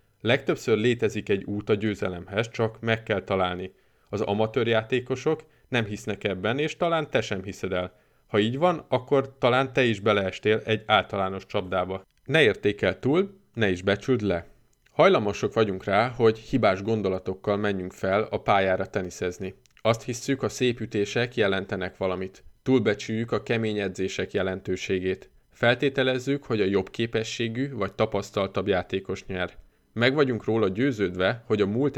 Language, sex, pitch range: Hungarian, male, 95-125 Hz